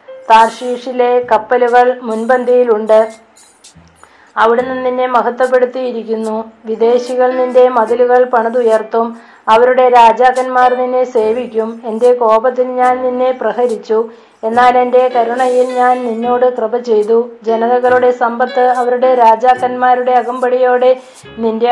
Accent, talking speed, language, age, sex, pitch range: native, 90 wpm, Malayalam, 20-39, female, 230-250 Hz